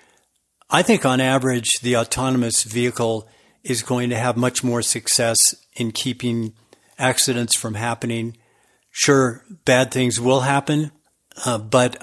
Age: 50-69